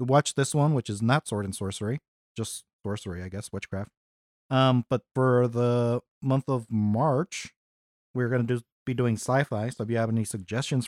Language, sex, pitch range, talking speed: English, male, 110-140 Hz, 180 wpm